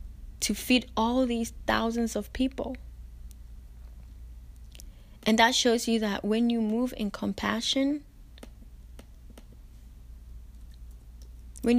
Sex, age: female, 20-39